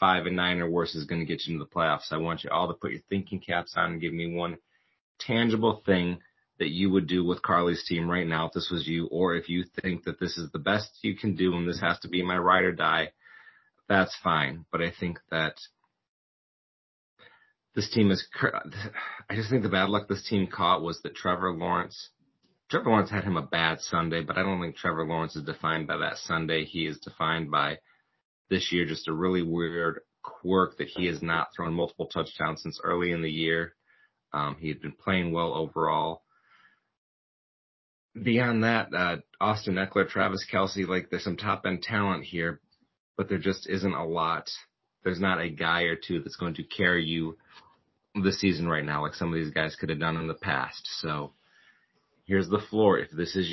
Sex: male